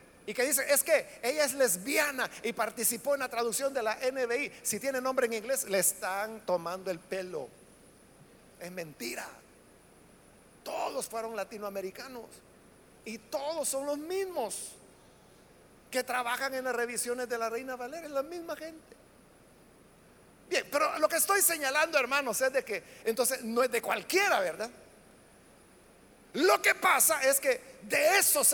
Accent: Mexican